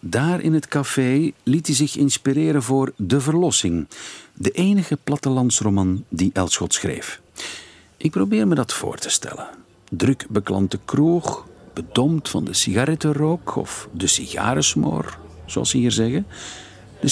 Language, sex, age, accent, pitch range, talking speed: Dutch, male, 50-69, Dutch, 100-150 Hz, 135 wpm